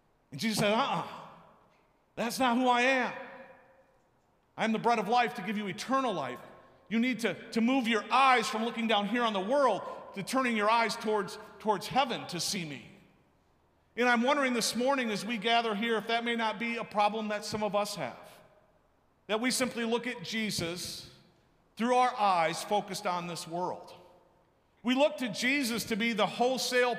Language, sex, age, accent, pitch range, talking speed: English, male, 50-69, American, 205-245 Hz, 190 wpm